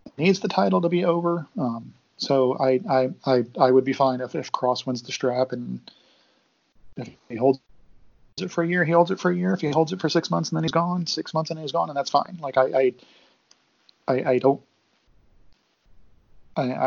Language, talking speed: English, 215 wpm